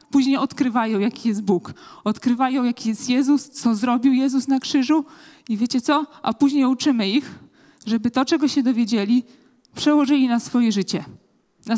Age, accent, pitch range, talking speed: 20-39, native, 225-280 Hz, 160 wpm